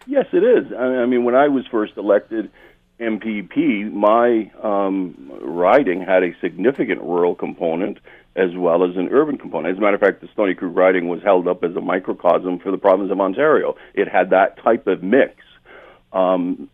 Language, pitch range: English, 90-110 Hz